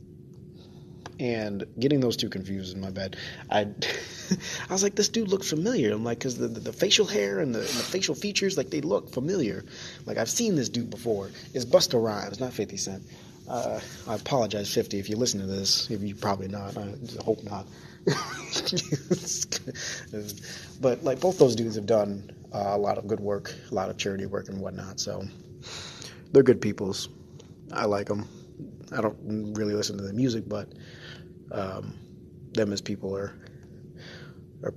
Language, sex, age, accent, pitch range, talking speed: English, male, 30-49, American, 100-125 Hz, 180 wpm